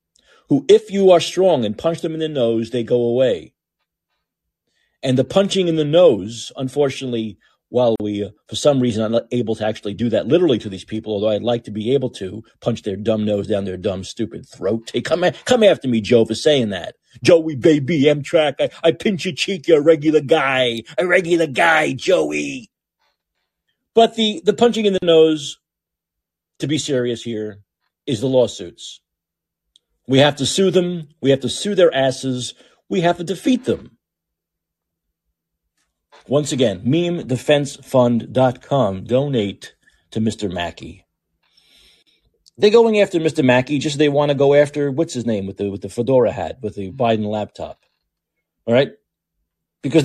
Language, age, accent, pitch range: English, 40-59, American, 110-160 Hz